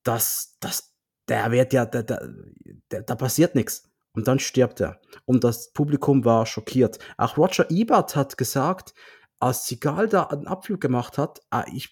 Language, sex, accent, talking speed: German, male, German, 175 wpm